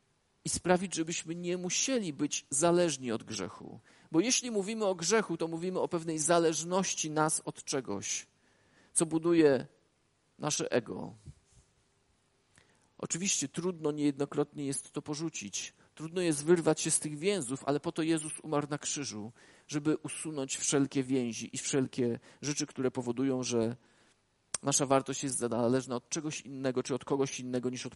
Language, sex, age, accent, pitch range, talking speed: Polish, male, 40-59, native, 140-195 Hz, 150 wpm